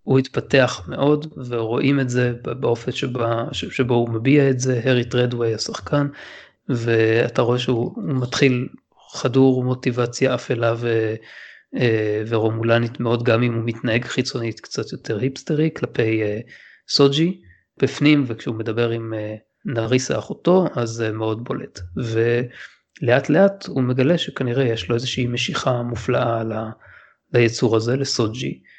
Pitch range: 115-130 Hz